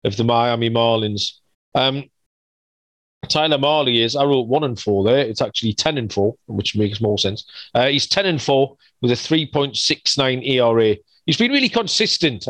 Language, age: English, 40-59